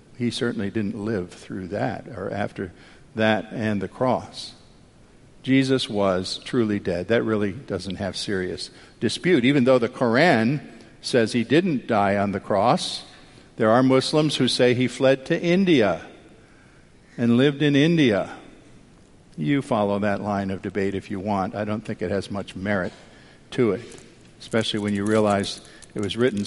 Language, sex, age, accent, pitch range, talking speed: English, male, 50-69, American, 105-135 Hz, 160 wpm